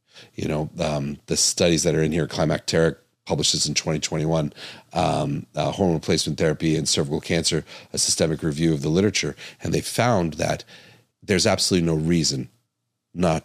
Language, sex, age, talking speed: English, male, 40-59, 160 wpm